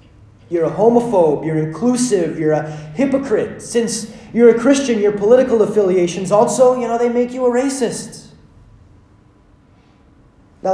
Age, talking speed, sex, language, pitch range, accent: 30-49, 135 wpm, male, English, 110-185 Hz, American